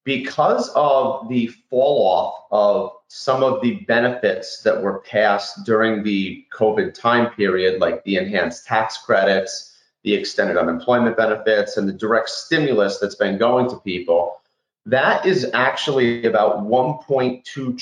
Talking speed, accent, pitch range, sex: 140 wpm, American, 100-130 Hz, male